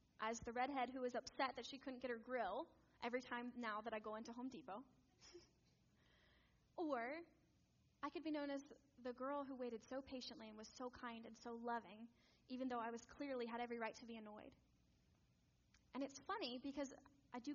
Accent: American